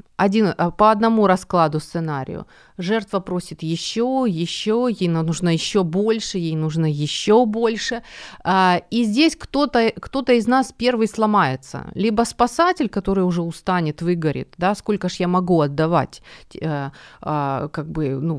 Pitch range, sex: 170-220 Hz, female